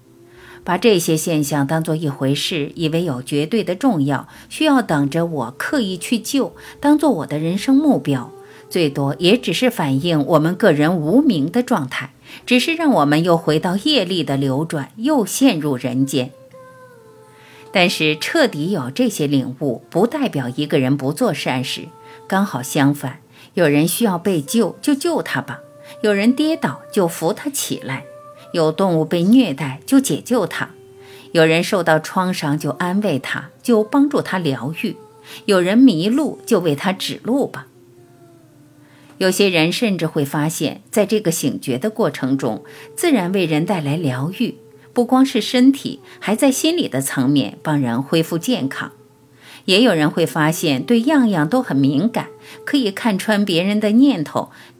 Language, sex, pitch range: Chinese, female, 145-225 Hz